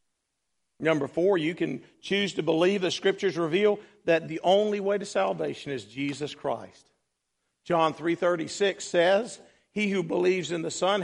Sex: male